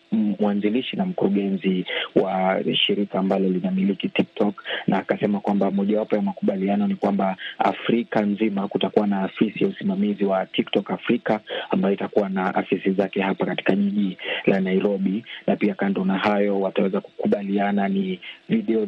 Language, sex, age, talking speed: Swahili, male, 30-49, 145 wpm